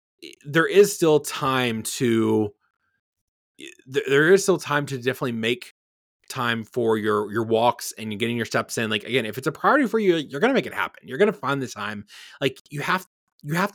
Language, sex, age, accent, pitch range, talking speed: English, male, 20-39, American, 120-170 Hz, 200 wpm